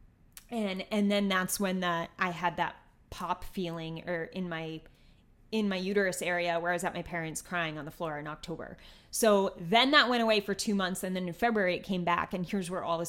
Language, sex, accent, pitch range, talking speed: English, female, American, 175-225 Hz, 230 wpm